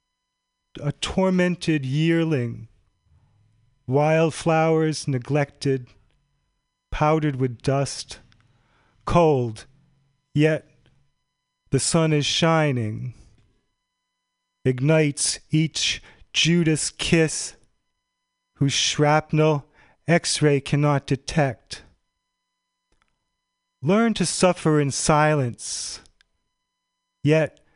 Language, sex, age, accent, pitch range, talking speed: English, male, 40-59, American, 130-165 Hz, 65 wpm